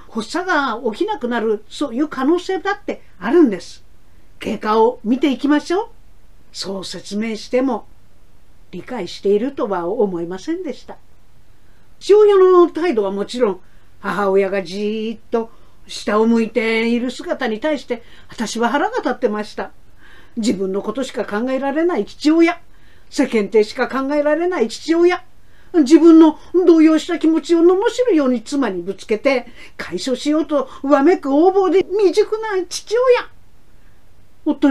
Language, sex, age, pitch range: Japanese, female, 50-69, 225-315 Hz